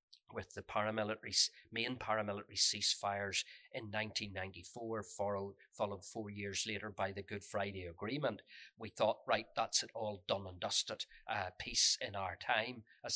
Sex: male